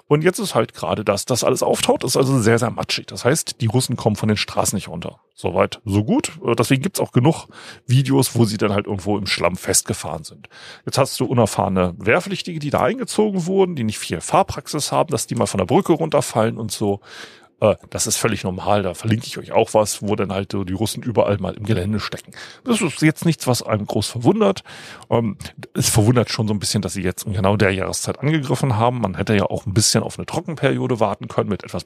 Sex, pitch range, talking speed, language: male, 105-130 Hz, 230 wpm, German